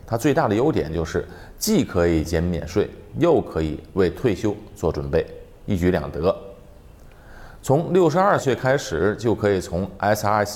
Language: Chinese